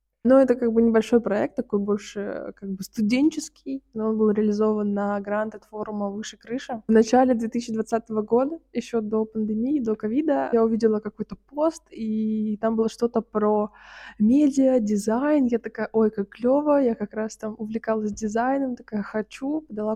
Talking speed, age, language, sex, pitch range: 160 wpm, 20-39, Russian, female, 210-240 Hz